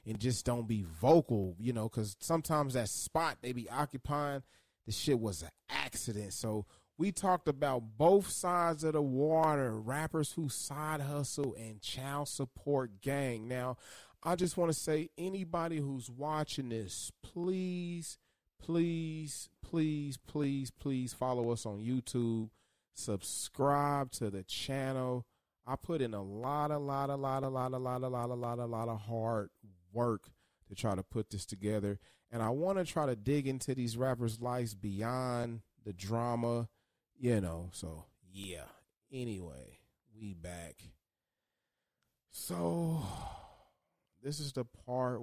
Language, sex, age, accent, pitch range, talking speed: English, male, 30-49, American, 105-140 Hz, 150 wpm